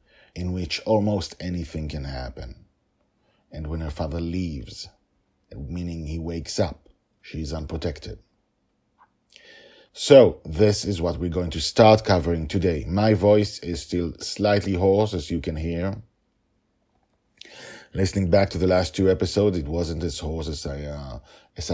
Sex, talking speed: male, 145 wpm